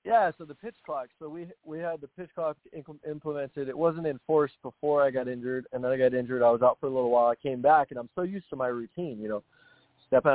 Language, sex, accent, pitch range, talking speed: English, male, American, 115-145 Hz, 265 wpm